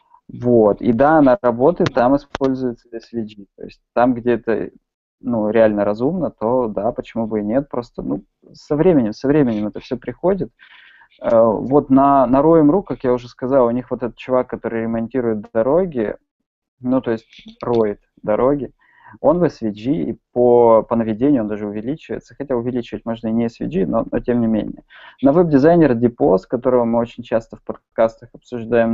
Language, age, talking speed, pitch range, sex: Russian, 20-39, 175 wpm, 115-140 Hz, male